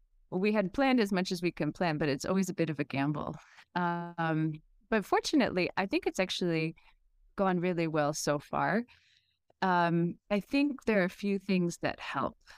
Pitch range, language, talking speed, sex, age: 155-190 Hz, English, 185 wpm, female, 30-49